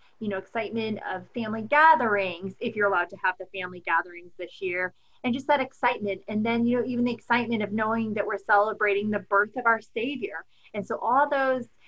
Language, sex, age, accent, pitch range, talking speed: English, female, 30-49, American, 205-240 Hz, 205 wpm